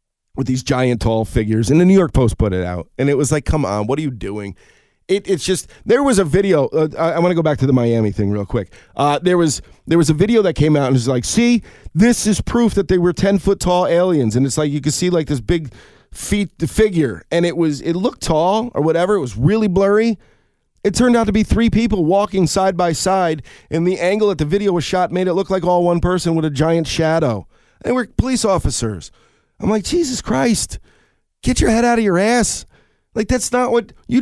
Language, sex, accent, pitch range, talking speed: English, male, American, 130-190 Hz, 250 wpm